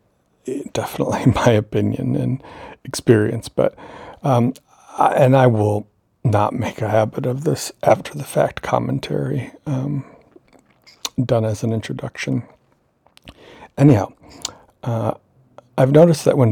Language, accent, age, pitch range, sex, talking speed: English, American, 60-79, 105-125 Hz, male, 105 wpm